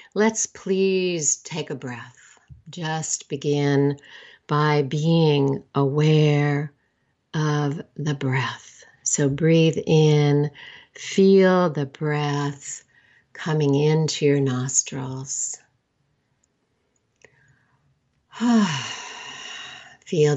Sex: female